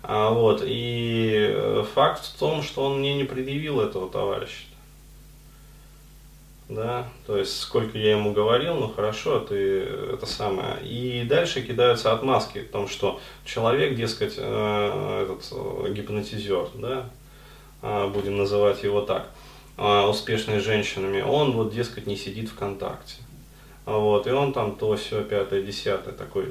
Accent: native